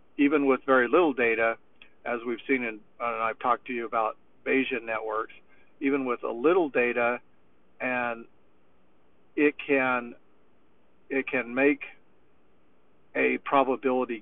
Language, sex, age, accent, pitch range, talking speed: English, male, 50-69, American, 115-135 Hz, 125 wpm